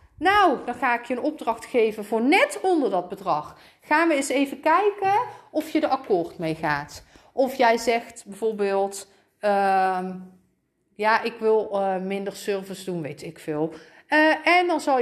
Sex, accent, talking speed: female, Dutch, 170 wpm